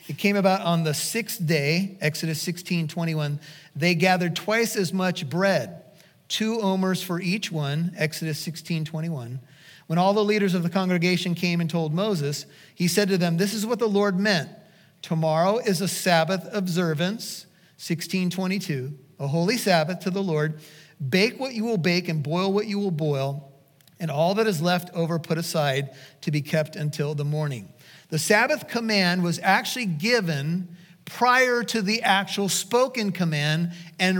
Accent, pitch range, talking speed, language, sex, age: American, 165-205 Hz, 165 wpm, English, male, 40-59